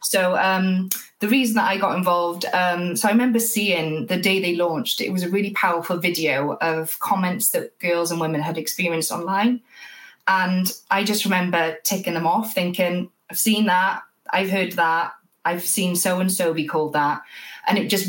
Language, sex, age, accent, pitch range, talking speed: English, female, 20-39, British, 165-195 Hz, 180 wpm